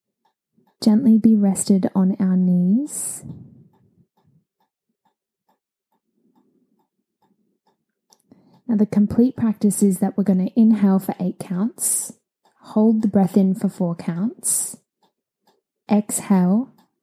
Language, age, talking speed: English, 10-29, 95 wpm